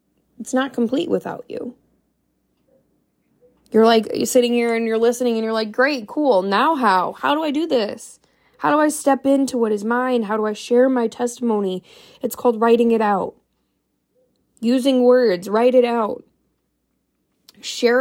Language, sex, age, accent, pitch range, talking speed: English, female, 20-39, American, 230-280 Hz, 165 wpm